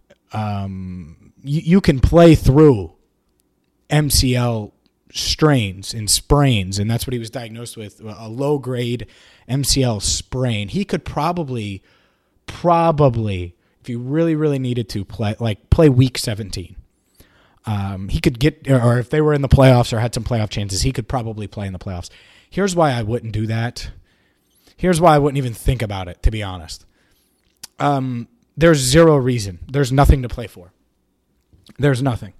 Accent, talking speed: American, 160 wpm